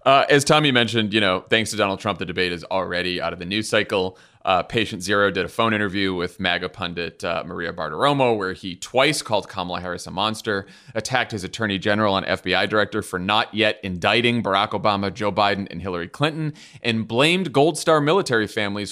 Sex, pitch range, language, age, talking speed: male, 95-120 Hz, English, 30-49, 205 wpm